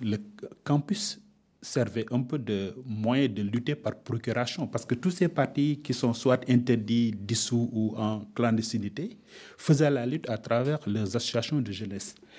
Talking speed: 160 wpm